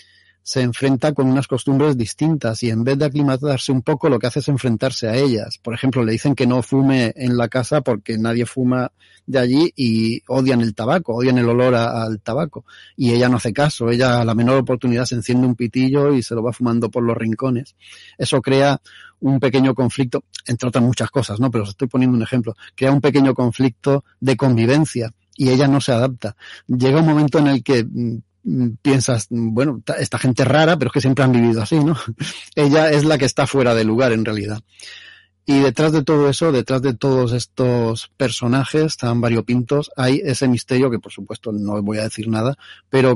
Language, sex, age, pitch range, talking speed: Spanish, male, 30-49, 115-135 Hz, 205 wpm